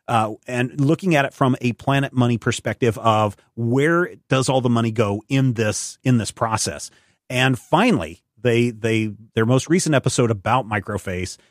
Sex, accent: male, American